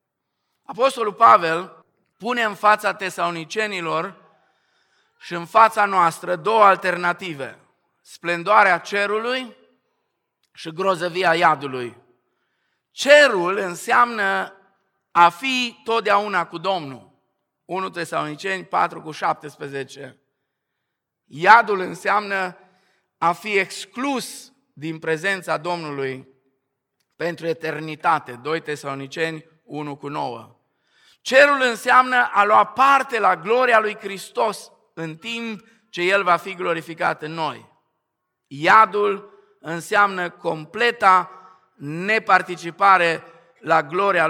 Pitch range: 160-205 Hz